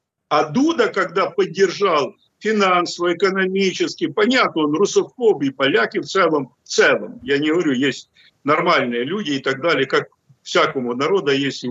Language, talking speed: Russian, 140 wpm